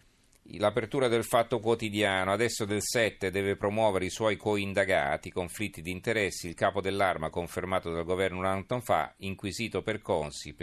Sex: male